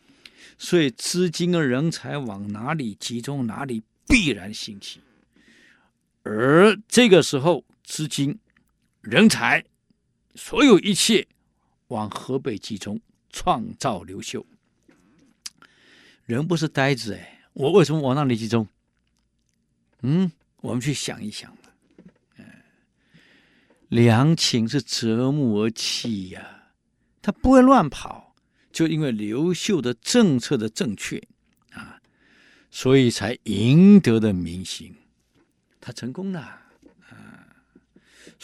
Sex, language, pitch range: male, Chinese, 115-165 Hz